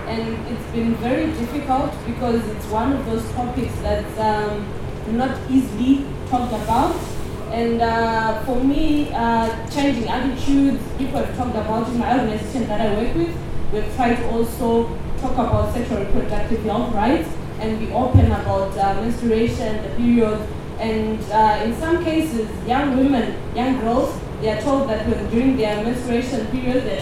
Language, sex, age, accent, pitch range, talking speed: English, female, 20-39, South African, 225-255 Hz, 160 wpm